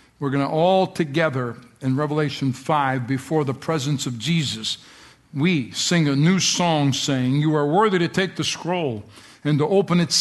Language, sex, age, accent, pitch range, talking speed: English, male, 50-69, American, 130-190 Hz, 175 wpm